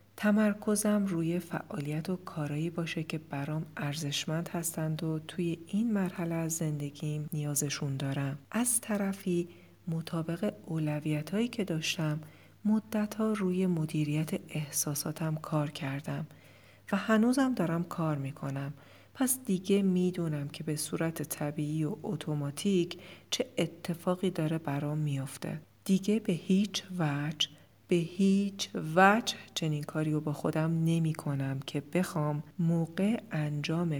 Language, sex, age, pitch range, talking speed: Persian, female, 40-59, 150-185 Hz, 120 wpm